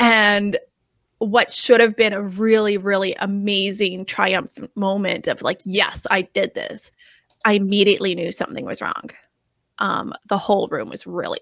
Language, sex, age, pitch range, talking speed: English, female, 20-39, 195-230 Hz, 150 wpm